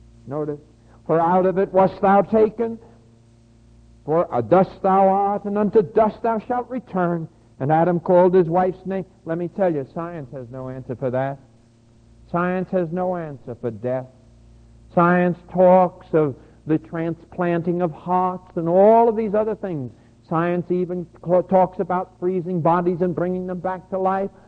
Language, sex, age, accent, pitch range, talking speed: English, male, 60-79, American, 120-190 Hz, 160 wpm